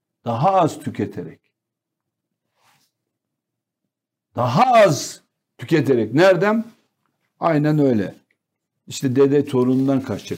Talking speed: 75 wpm